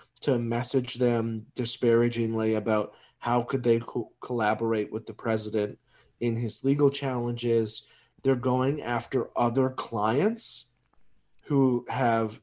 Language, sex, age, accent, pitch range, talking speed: English, male, 30-49, American, 115-135 Hz, 110 wpm